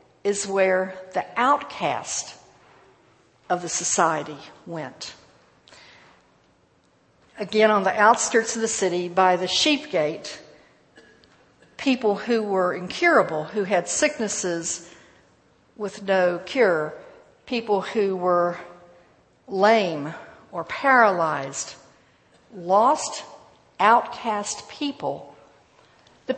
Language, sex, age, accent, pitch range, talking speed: English, female, 60-79, American, 175-230 Hz, 90 wpm